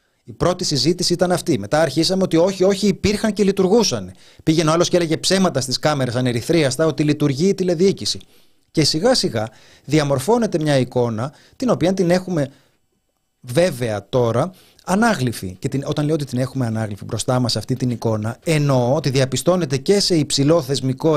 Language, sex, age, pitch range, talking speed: Greek, male, 30-49, 130-180 Hz, 165 wpm